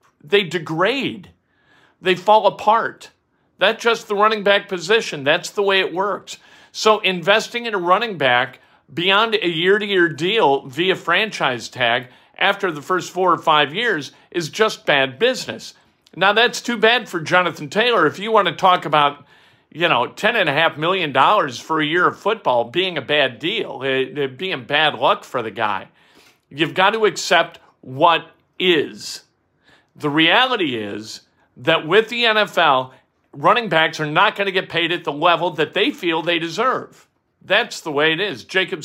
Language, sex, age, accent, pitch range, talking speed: English, male, 50-69, American, 160-220 Hz, 170 wpm